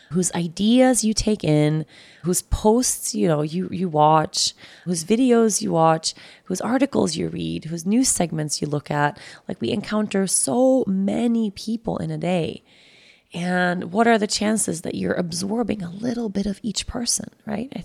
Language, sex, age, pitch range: English, female, 20-39, 150-195 Hz